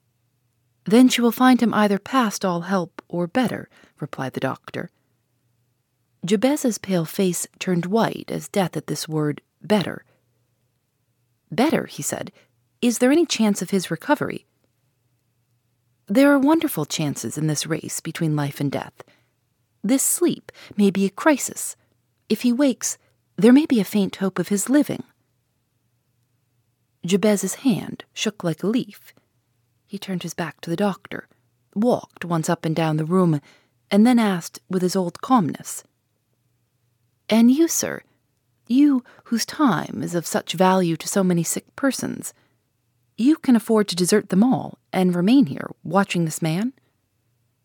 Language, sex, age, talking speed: English, female, 40-59, 150 wpm